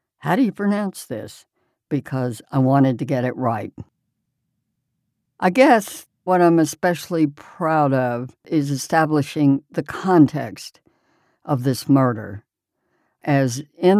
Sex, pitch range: female, 125-155 Hz